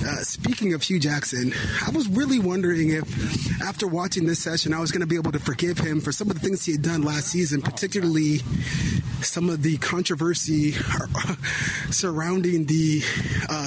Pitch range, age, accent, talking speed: 140-175 Hz, 30-49, American, 180 wpm